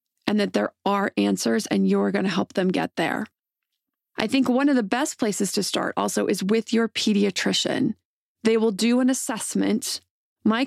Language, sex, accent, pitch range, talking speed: English, female, American, 200-235 Hz, 185 wpm